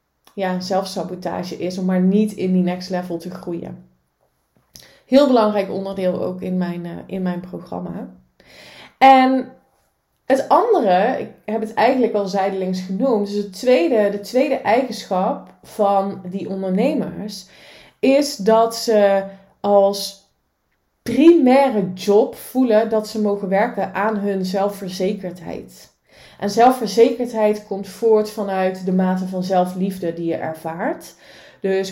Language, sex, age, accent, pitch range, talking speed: Dutch, female, 20-39, Dutch, 185-215 Hz, 125 wpm